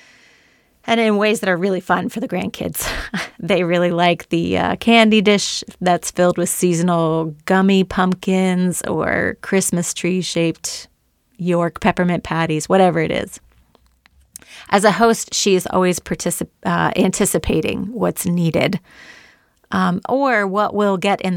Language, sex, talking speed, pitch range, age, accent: English, female, 135 wpm, 170-200 Hz, 30-49, American